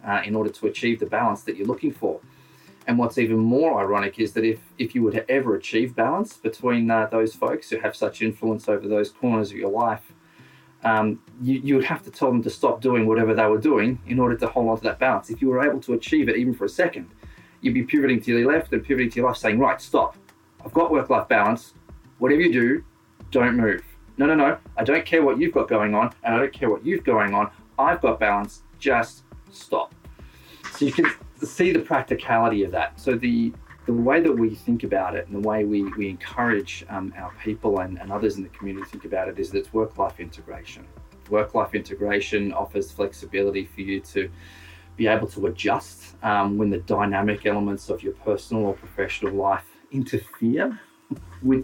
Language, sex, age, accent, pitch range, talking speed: English, male, 30-49, Australian, 100-120 Hz, 215 wpm